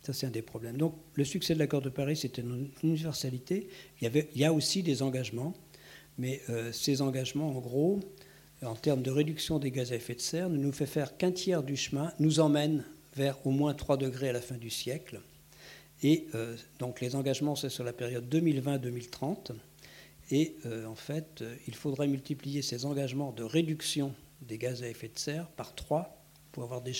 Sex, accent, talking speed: male, French, 205 wpm